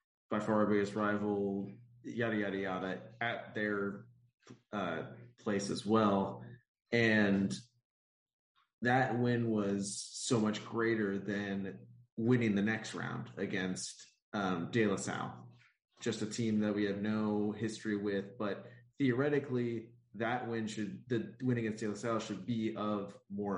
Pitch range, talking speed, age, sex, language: 95-115 Hz, 140 wpm, 30-49, male, English